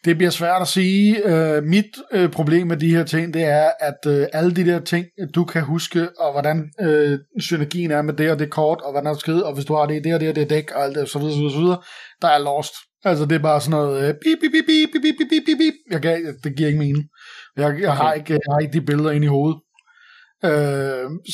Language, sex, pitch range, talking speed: Danish, male, 150-180 Hz, 255 wpm